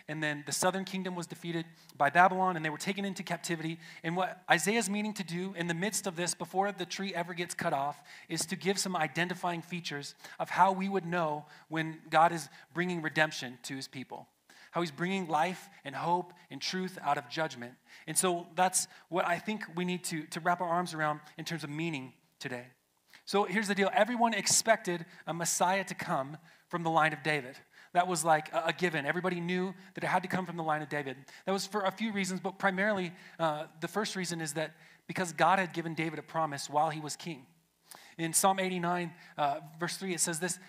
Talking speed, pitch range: 220 wpm, 160-190 Hz